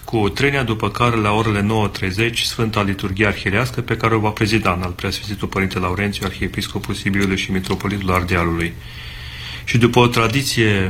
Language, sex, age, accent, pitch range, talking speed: Romanian, male, 40-59, native, 100-120 Hz, 160 wpm